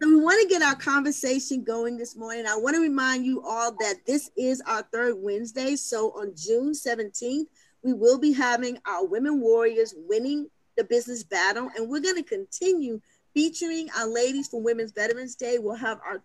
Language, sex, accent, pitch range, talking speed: English, female, American, 230-310 Hz, 190 wpm